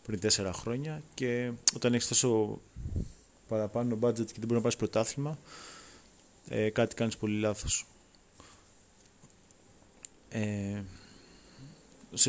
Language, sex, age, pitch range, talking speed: Greek, male, 20-39, 105-125 Hz, 100 wpm